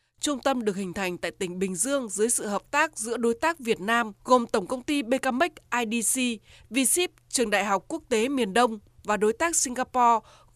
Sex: female